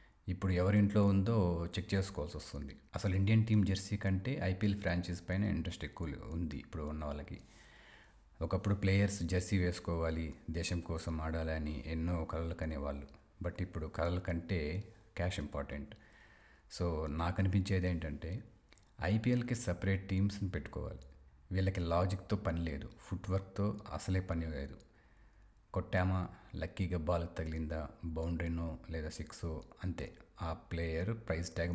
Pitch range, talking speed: 80-95 Hz, 120 wpm